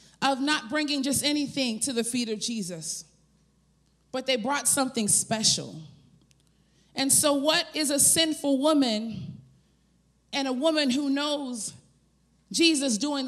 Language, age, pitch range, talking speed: English, 30-49, 220-290 Hz, 130 wpm